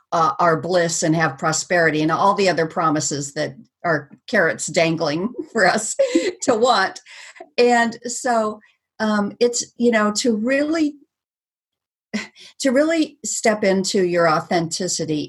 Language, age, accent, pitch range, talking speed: English, 50-69, American, 175-245 Hz, 130 wpm